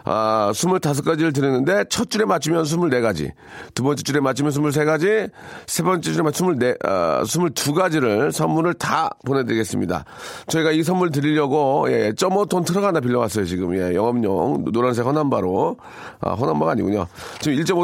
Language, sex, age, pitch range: Korean, male, 40-59, 120-165 Hz